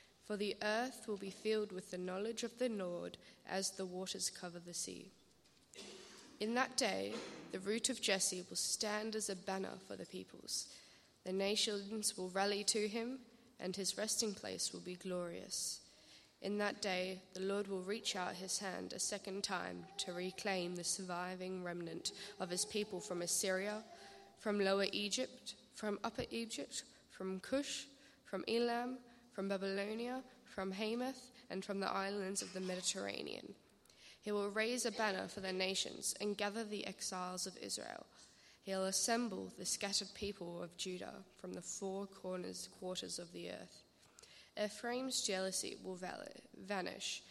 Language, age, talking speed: English, 10-29, 155 wpm